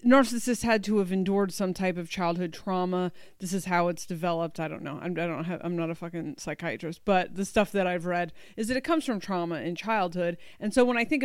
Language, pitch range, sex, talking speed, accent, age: English, 185-220 Hz, female, 245 wpm, American, 30-49